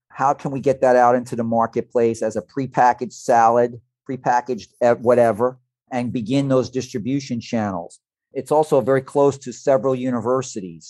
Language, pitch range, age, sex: English, 115-135 Hz, 40-59, male